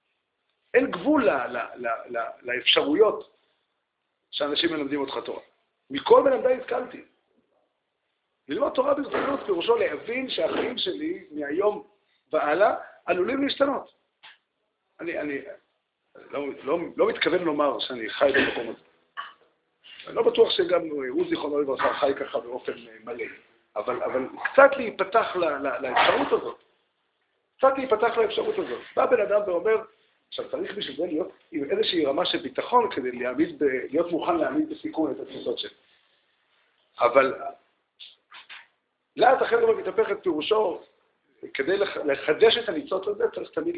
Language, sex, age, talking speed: Hebrew, male, 50-69, 135 wpm